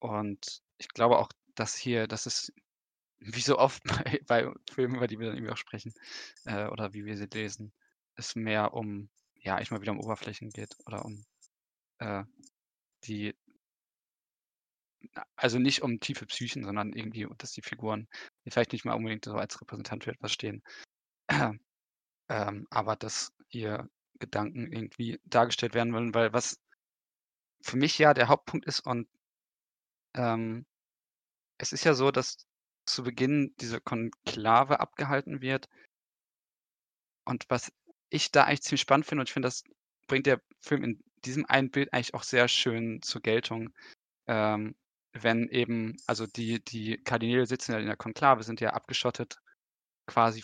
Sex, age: male, 20-39